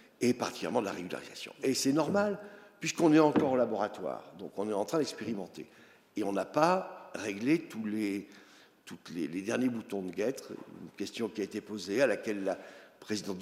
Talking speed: 190 wpm